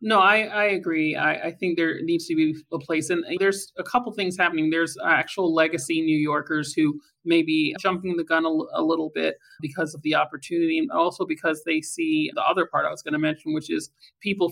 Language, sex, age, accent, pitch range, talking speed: English, male, 30-49, American, 155-205 Hz, 230 wpm